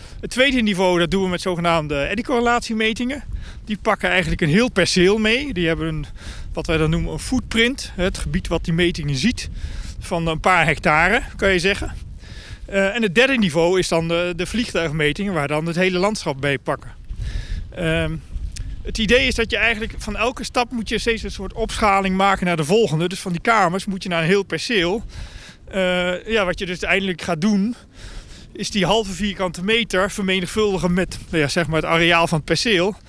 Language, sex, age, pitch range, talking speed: Dutch, male, 40-59, 160-210 Hz, 200 wpm